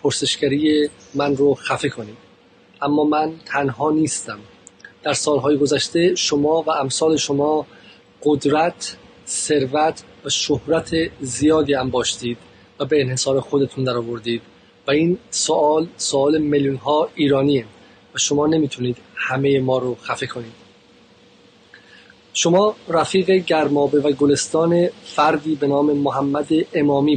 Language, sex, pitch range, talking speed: Persian, male, 140-160 Hz, 115 wpm